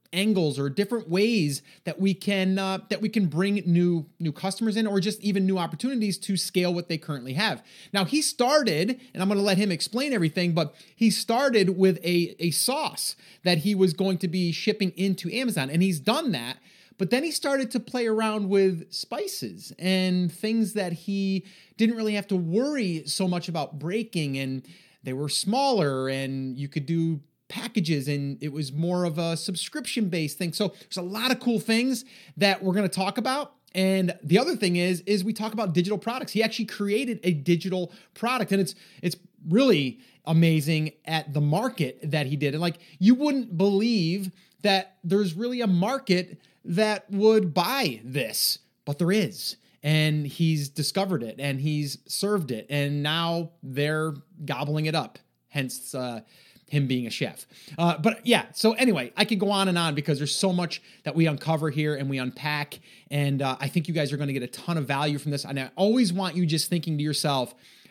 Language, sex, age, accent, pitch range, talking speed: English, male, 30-49, American, 155-210 Hz, 195 wpm